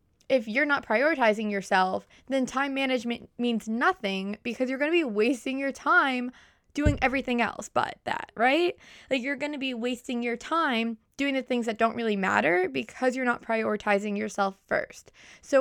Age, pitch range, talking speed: 20-39, 215-265 Hz, 175 wpm